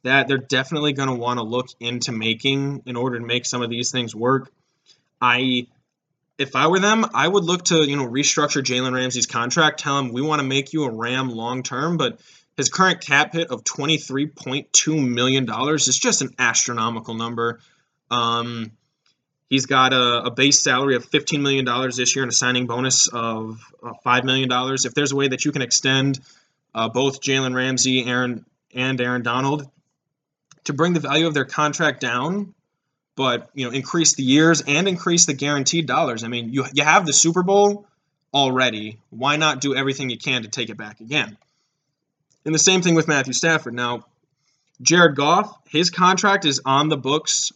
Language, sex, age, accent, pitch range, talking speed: English, male, 20-39, American, 125-155 Hz, 195 wpm